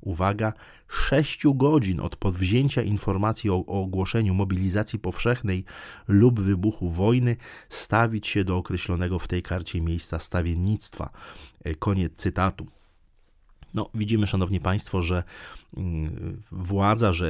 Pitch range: 90-110 Hz